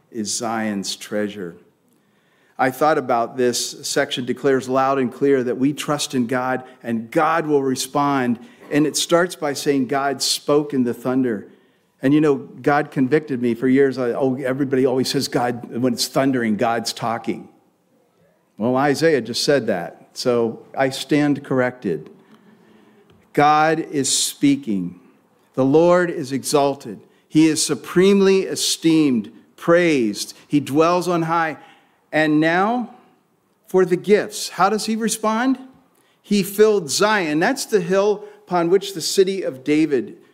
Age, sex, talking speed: 50-69, male, 140 wpm